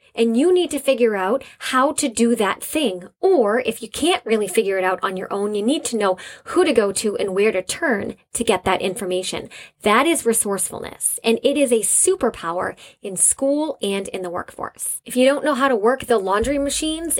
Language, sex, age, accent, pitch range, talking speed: English, female, 20-39, American, 205-270 Hz, 215 wpm